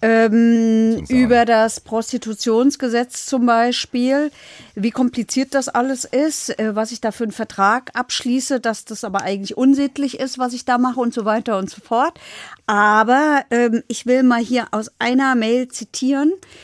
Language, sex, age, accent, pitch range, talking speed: German, female, 50-69, German, 200-250 Hz, 155 wpm